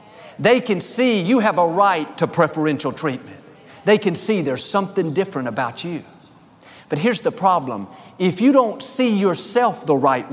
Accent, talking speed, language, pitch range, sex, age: American, 170 wpm, English, 140-205 Hz, male, 50-69